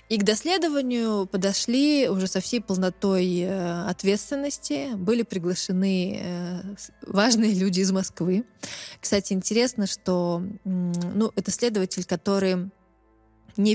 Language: Russian